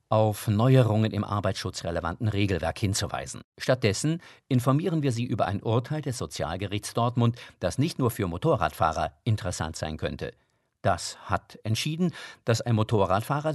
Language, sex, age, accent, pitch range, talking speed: German, male, 50-69, German, 95-130 Hz, 135 wpm